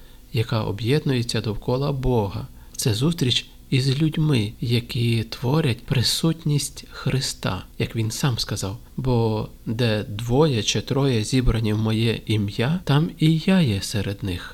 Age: 50-69